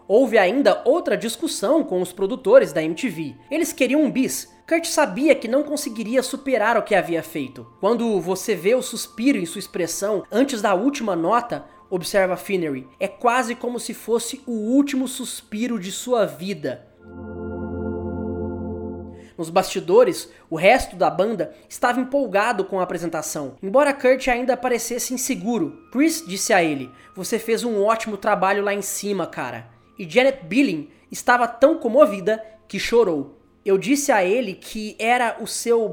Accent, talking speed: Brazilian, 155 wpm